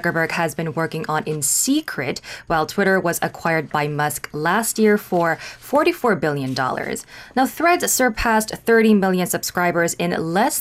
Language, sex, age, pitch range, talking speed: English, female, 20-39, 165-225 Hz, 145 wpm